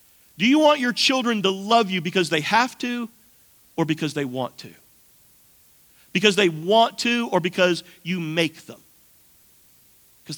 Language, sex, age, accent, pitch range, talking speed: English, male, 50-69, American, 150-215 Hz, 155 wpm